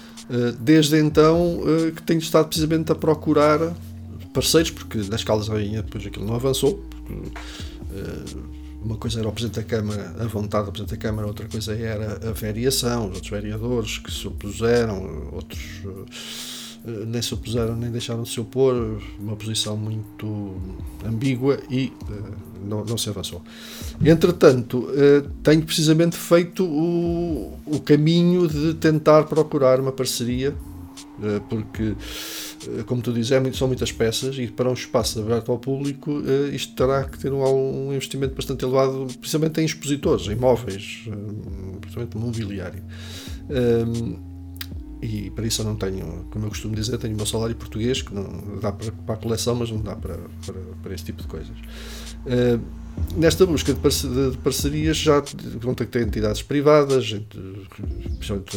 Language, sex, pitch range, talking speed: Portuguese, male, 105-135 Hz, 160 wpm